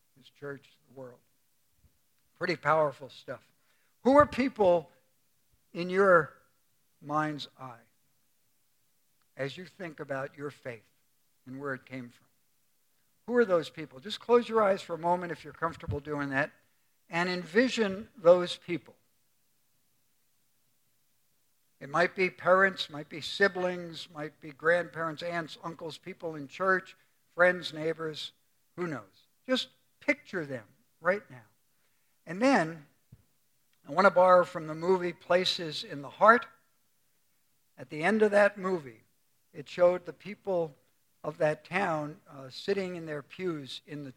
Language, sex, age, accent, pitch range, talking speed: English, male, 60-79, American, 135-180 Hz, 135 wpm